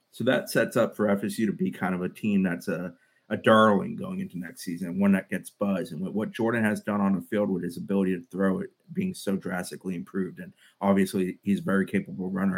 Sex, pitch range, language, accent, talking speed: male, 95-130 Hz, English, American, 235 wpm